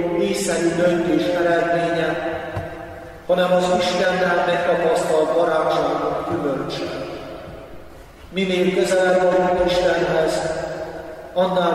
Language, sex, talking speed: Hungarian, male, 65 wpm